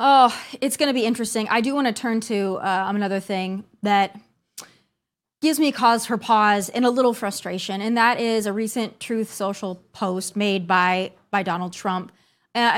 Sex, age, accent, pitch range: female, 20-39, American, 210-265 Hz